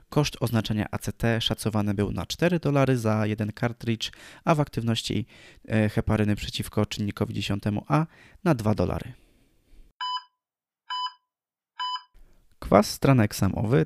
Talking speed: 105 wpm